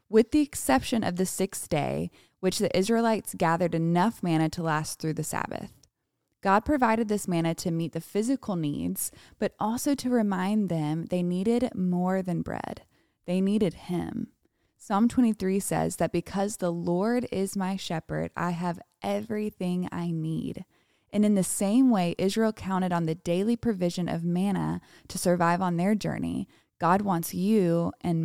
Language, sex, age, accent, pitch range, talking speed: English, female, 20-39, American, 170-210 Hz, 165 wpm